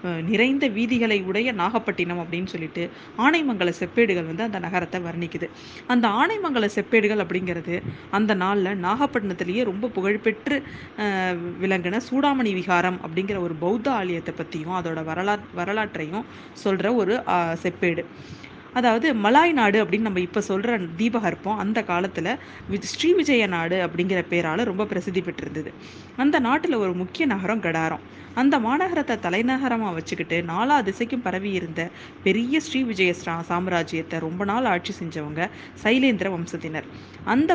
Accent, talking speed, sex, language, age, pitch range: native, 125 wpm, female, Tamil, 20-39, 175-230 Hz